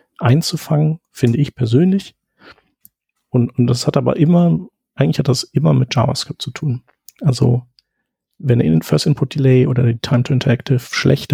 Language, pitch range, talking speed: German, 120-140 Hz, 160 wpm